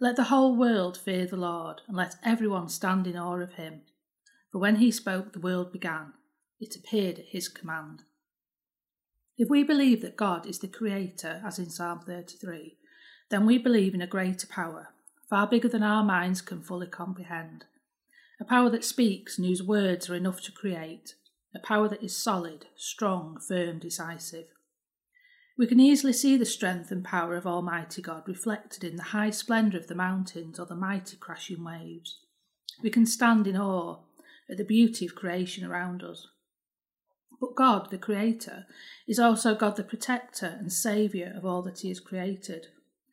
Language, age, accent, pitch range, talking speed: English, 40-59, British, 180-225 Hz, 175 wpm